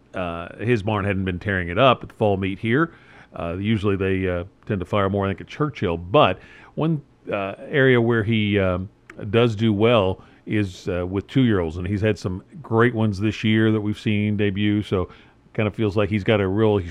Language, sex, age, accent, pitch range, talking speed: English, male, 50-69, American, 105-125 Hz, 215 wpm